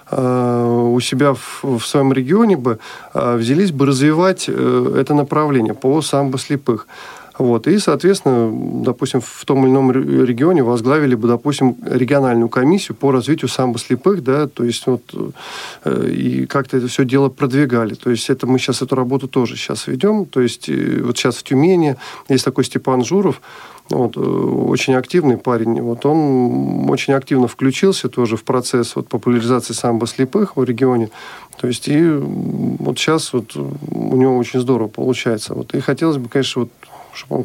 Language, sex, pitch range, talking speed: Russian, male, 120-140 Hz, 145 wpm